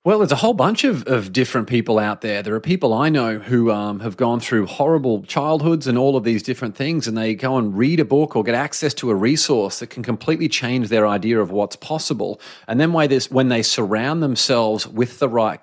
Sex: male